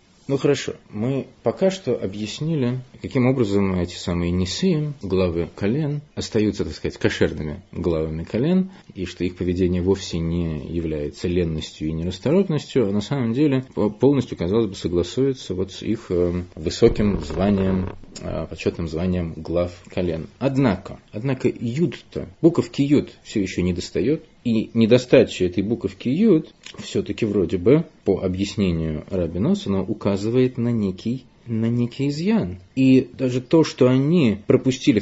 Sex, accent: male, native